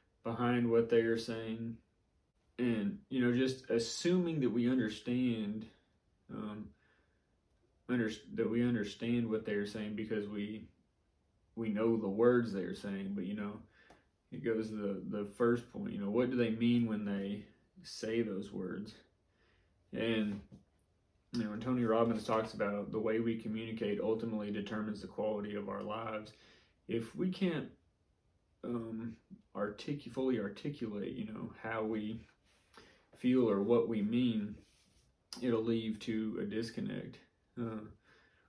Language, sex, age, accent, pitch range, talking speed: English, male, 30-49, American, 105-120 Hz, 145 wpm